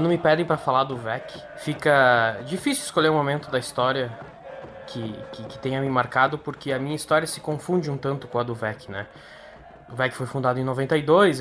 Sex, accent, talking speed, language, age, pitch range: male, Brazilian, 205 wpm, Portuguese, 10-29, 125-155 Hz